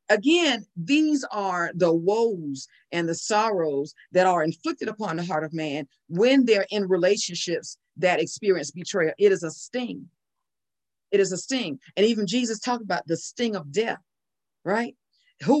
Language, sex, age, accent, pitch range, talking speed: English, female, 50-69, American, 180-235 Hz, 160 wpm